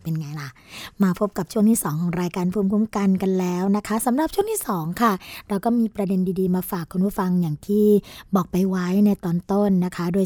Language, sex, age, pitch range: Thai, female, 20-39, 180-225 Hz